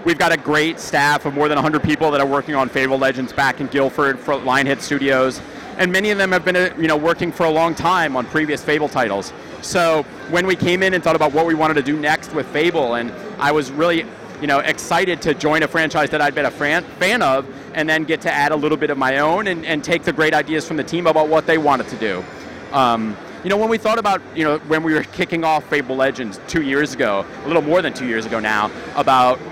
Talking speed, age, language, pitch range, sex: 255 wpm, 30-49, English, 145-180 Hz, male